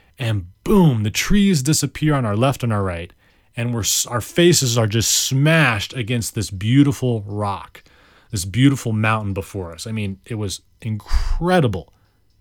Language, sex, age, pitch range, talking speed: English, male, 30-49, 100-145 Hz, 155 wpm